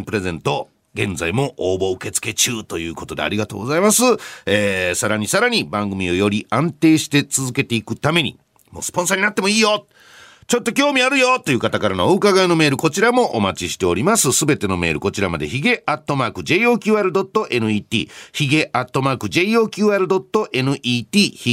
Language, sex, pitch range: Japanese, male, 100-165 Hz